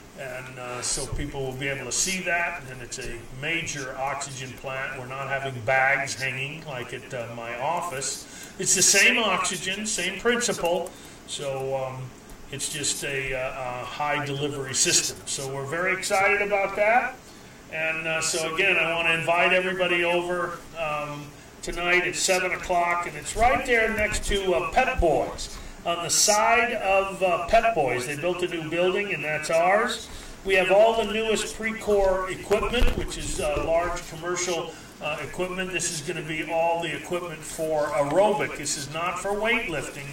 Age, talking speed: 40-59, 170 wpm